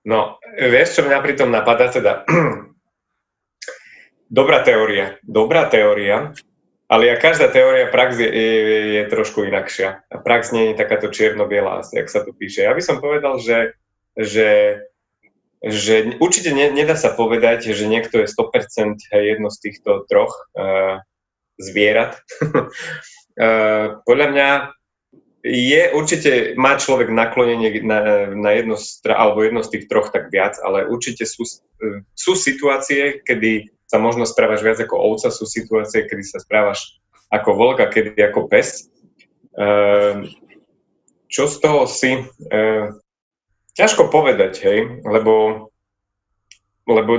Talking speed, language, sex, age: 135 wpm, Slovak, male, 20-39